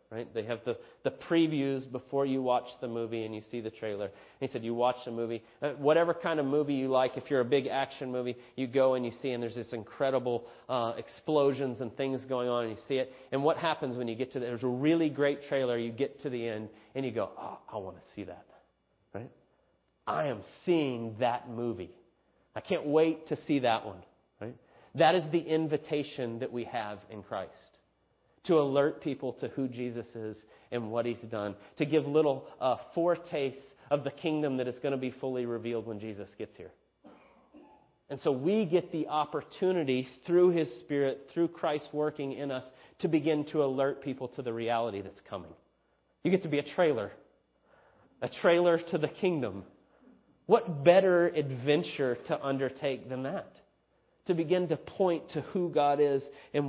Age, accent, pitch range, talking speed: 30-49, American, 120-155 Hz, 195 wpm